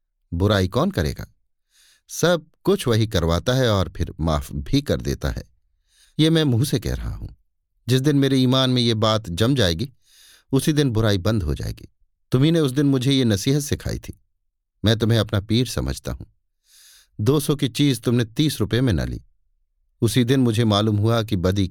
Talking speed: 190 wpm